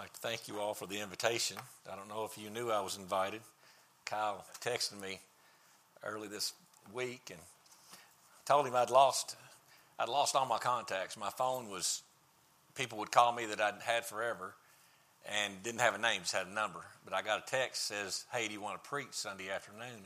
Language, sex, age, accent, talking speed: English, male, 50-69, American, 205 wpm